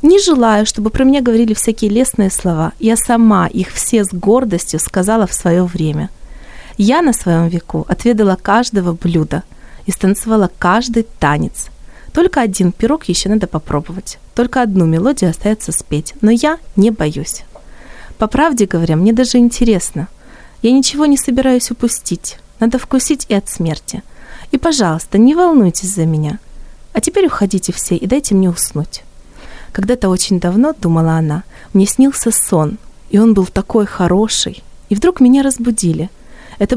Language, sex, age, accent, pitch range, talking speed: Ukrainian, female, 30-49, native, 175-235 Hz, 150 wpm